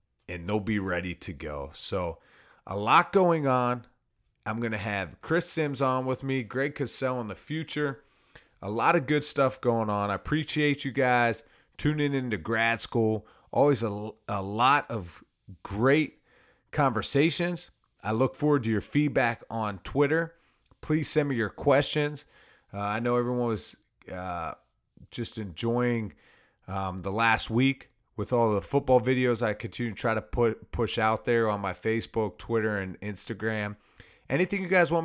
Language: English